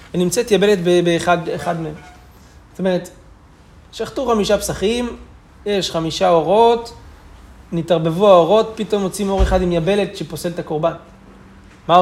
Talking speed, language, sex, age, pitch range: 130 wpm, Hebrew, male, 30-49, 150-200 Hz